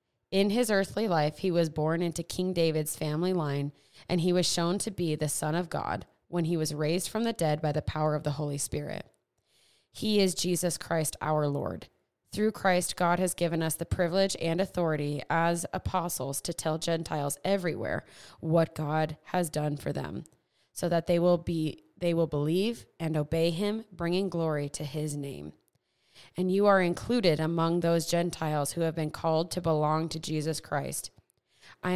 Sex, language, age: female, English, 20-39